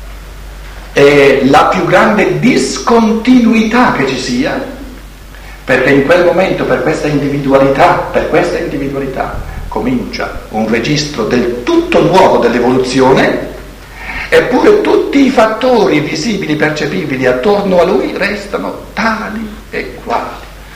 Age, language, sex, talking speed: 60-79, Italian, male, 110 wpm